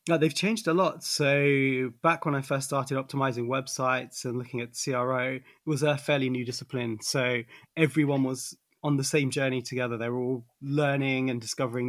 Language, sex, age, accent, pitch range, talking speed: English, male, 20-39, British, 120-135 Hz, 185 wpm